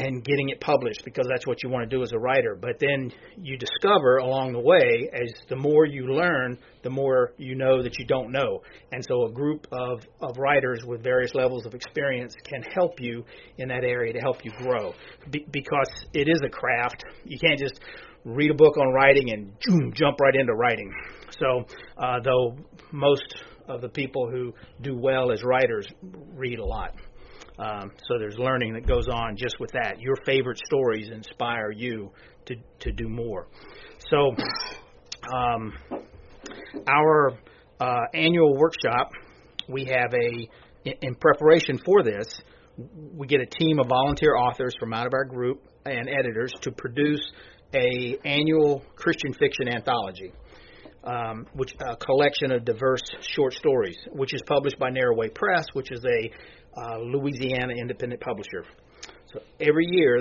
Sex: male